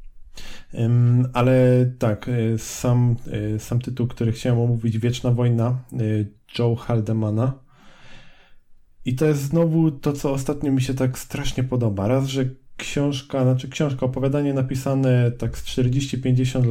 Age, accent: 20-39, native